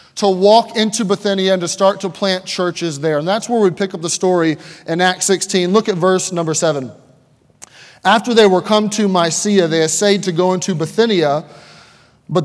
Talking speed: 195 wpm